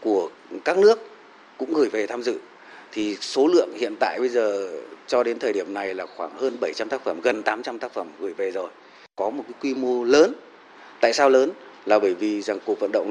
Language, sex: Vietnamese, male